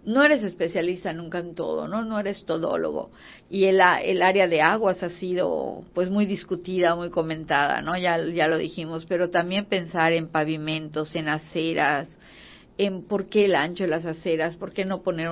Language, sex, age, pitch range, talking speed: Spanish, female, 50-69, 160-185 Hz, 185 wpm